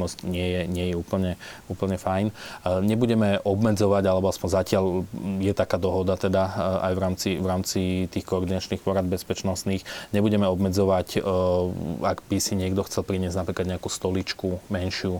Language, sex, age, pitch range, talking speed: Slovak, male, 20-39, 90-100 Hz, 145 wpm